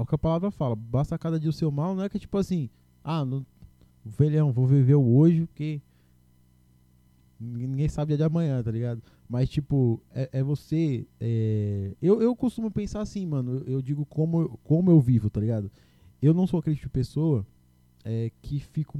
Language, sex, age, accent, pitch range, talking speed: Portuguese, male, 20-39, Brazilian, 125-155 Hz, 195 wpm